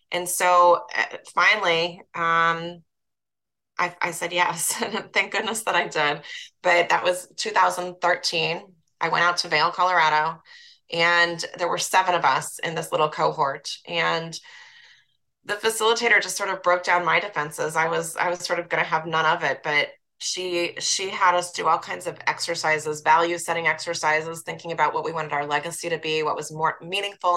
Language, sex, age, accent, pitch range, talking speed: English, female, 20-39, American, 165-185 Hz, 180 wpm